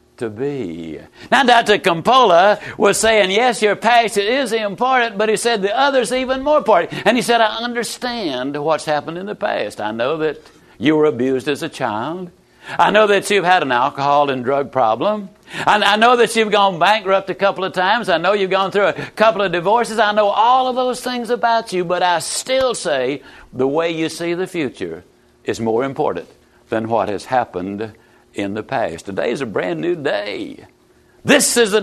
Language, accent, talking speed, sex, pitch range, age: English, American, 200 wpm, male, 160-230 Hz, 60-79